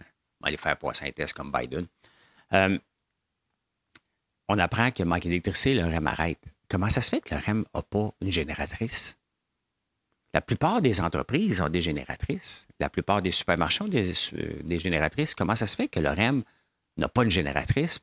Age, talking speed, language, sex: 50-69, 180 wpm, English, male